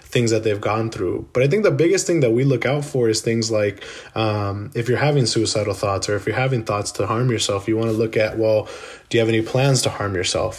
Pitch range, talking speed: 110-130 Hz, 265 wpm